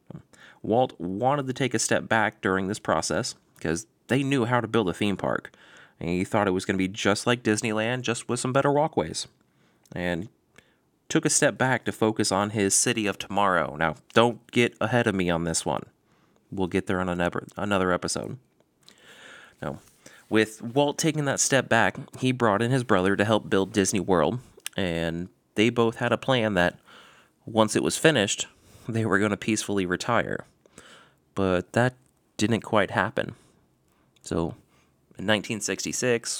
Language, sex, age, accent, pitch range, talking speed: English, male, 30-49, American, 95-115 Hz, 170 wpm